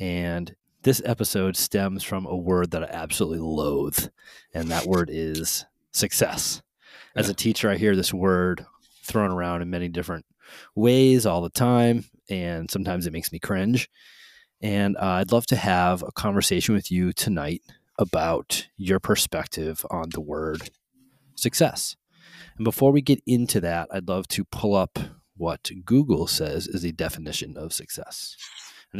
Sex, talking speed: male, 155 wpm